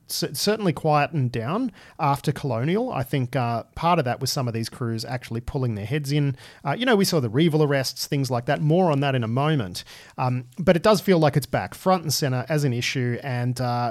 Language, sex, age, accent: English, male, 40-59, Australian